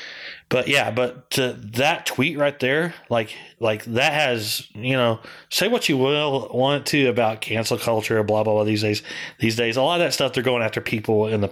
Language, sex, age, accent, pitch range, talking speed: English, male, 30-49, American, 110-130 Hz, 210 wpm